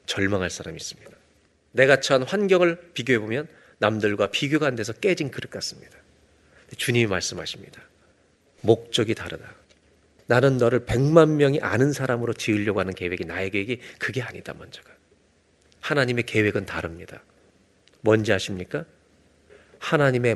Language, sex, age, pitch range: Korean, male, 40-59, 95-140 Hz